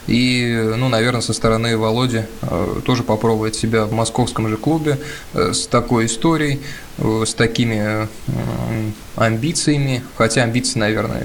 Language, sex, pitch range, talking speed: Russian, male, 110-130 Hz, 115 wpm